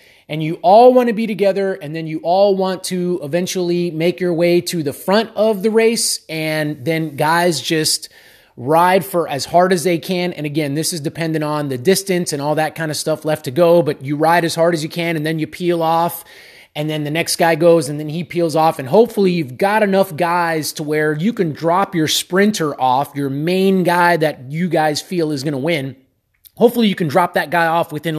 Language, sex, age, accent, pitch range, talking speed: English, male, 30-49, American, 155-185 Hz, 230 wpm